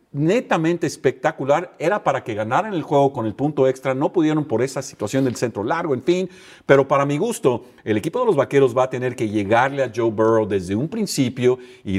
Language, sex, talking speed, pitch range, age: Spanish, male, 215 wpm, 105-140 Hz, 50-69